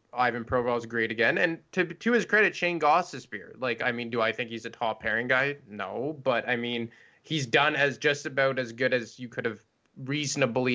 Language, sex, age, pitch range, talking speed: English, male, 20-39, 115-140 Hz, 220 wpm